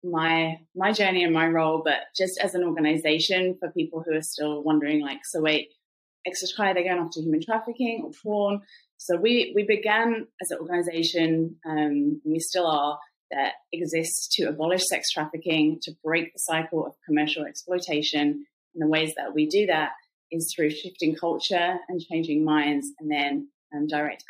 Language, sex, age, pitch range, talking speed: English, female, 30-49, 155-180 Hz, 180 wpm